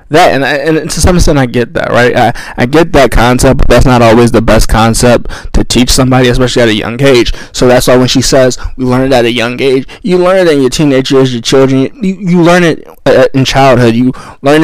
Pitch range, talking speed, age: 115-130 Hz, 255 wpm, 20-39